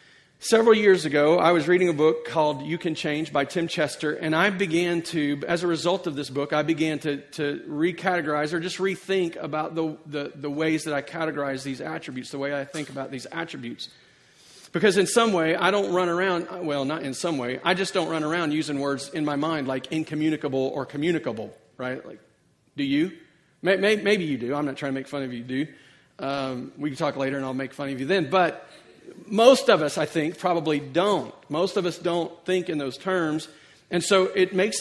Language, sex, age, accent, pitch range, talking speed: English, male, 40-59, American, 150-185 Hz, 215 wpm